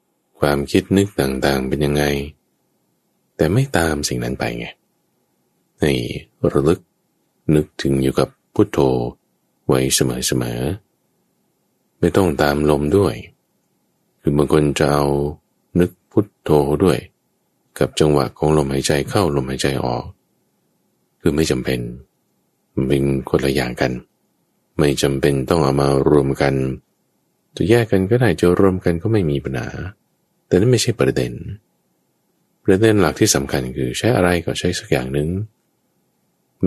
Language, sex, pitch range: Thai, male, 70-95 Hz